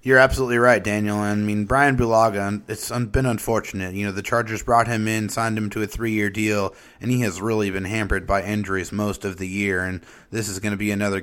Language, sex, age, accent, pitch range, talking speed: English, male, 30-49, American, 105-125 Hz, 235 wpm